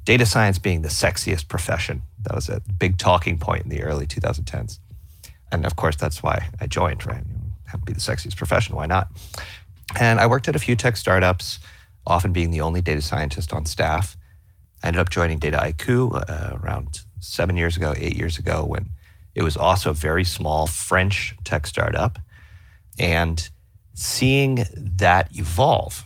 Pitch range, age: 85-105 Hz, 30-49